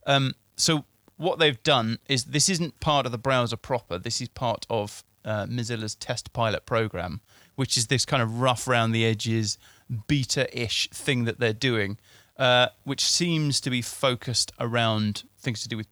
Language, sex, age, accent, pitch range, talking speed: English, male, 30-49, British, 110-130 Hz, 175 wpm